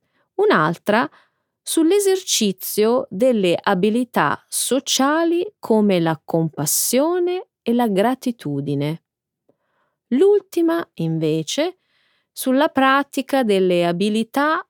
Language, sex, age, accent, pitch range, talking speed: Italian, female, 30-49, native, 175-280 Hz, 70 wpm